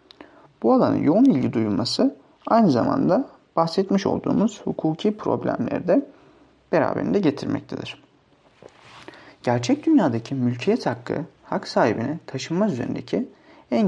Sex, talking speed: male, 95 wpm